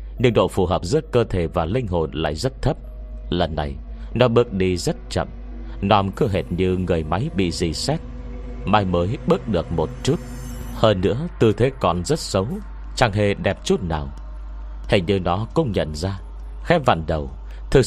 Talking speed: 190 wpm